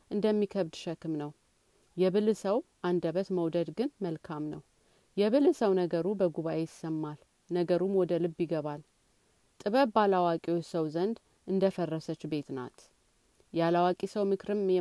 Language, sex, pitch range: Amharic, female, 165-200 Hz